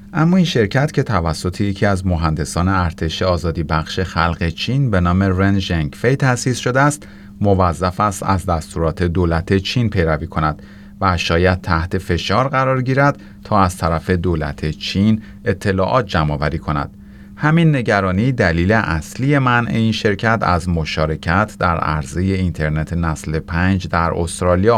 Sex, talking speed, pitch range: male, 140 wpm, 85-110 Hz